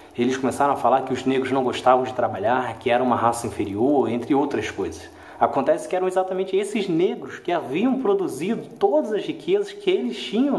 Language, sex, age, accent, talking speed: English, male, 20-39, Brazilian, 195 wpm